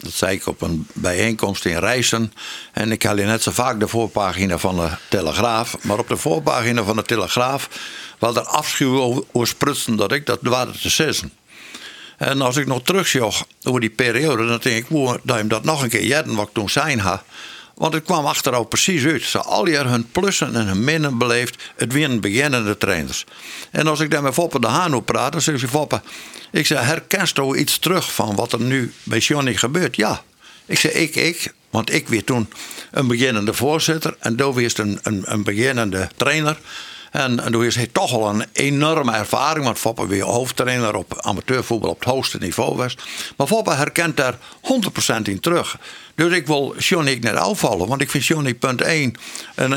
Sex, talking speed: male, 205 wpm